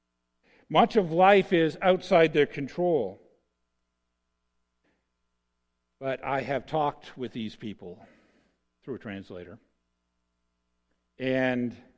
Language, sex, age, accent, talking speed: English, male, 50-69, American, 90 wpm